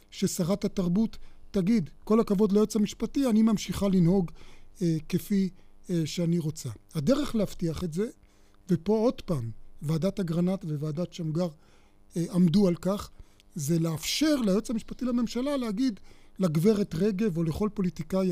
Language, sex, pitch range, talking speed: Hebrew, male, 165-215 Hz, 135 wpm